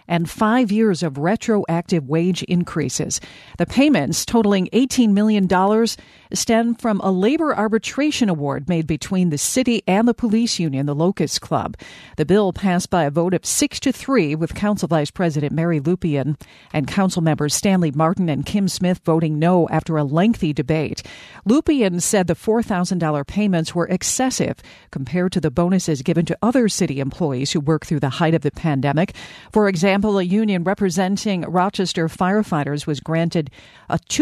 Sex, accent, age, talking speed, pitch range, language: female, American, 50-69, 165 wpm, 155-205 Hz, English